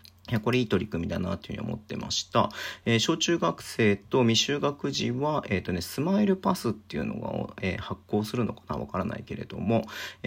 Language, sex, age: Japanese, male, 40-59